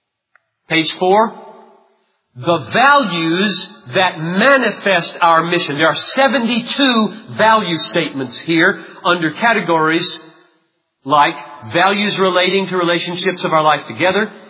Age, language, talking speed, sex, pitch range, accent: 50-69, English, 105 wpm, male, 155-205 Hz, American